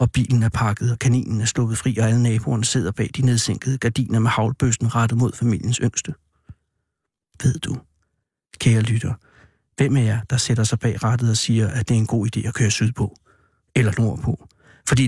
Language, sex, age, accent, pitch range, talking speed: Danish, male, 60-79, native, 115-135 Hz, 195 wpm